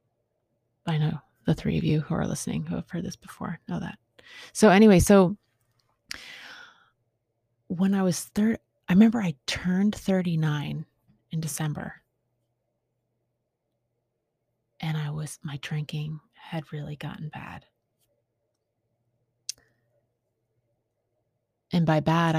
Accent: American